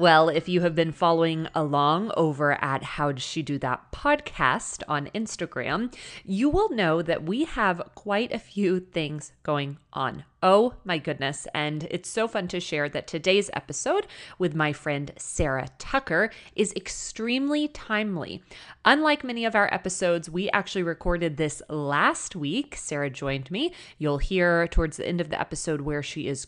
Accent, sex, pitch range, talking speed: American, female, 150-200 Hz, 170 wpm